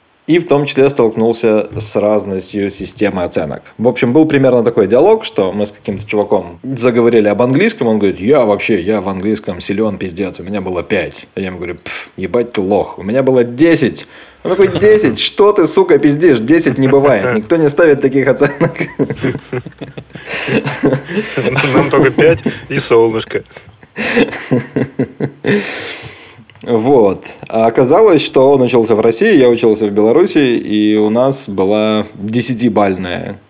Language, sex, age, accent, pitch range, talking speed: Russian, male, 20-39, native, 105-135 Hz, 150 wpm